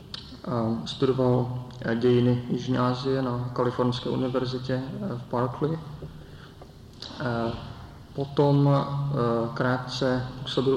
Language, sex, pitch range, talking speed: English, male, 115-130 Hz, 65 wpm